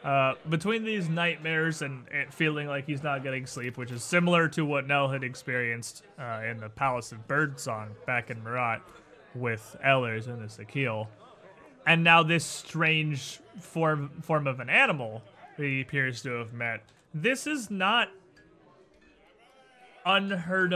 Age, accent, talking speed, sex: 30-49, American, 150 wpm, male